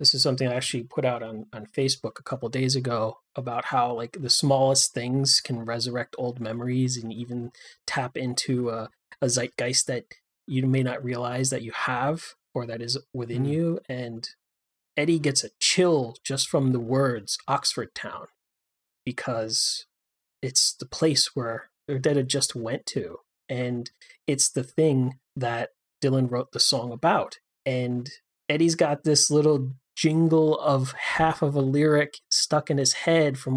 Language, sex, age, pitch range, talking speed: English, male, 30-49, 125-145 Hz, 165 wpm